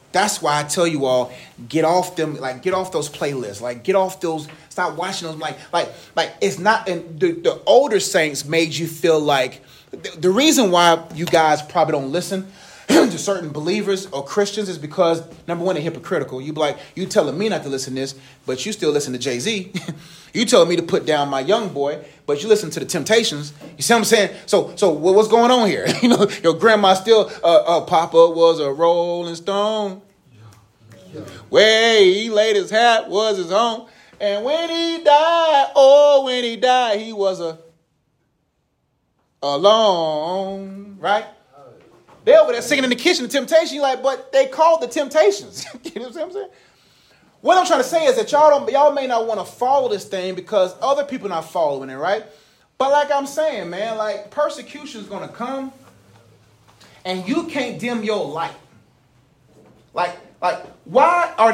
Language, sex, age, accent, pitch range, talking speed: English, male, 30-49, American, 160-235 Hz, 195 wpm